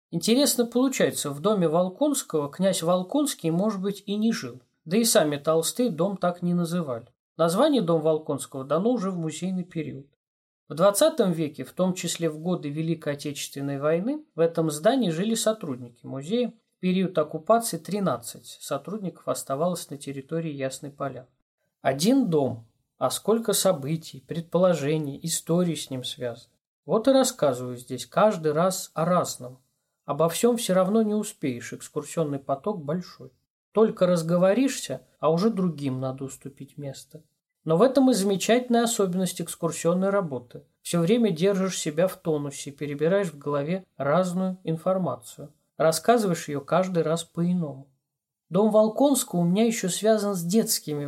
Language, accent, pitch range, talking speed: Russian, native, 150-200 Hz, 145 wpm